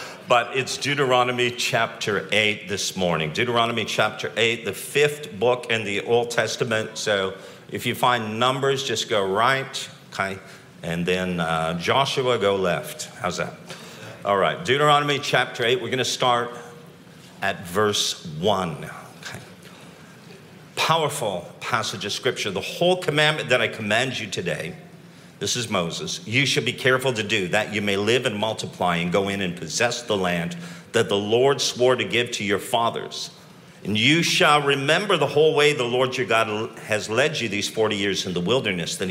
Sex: male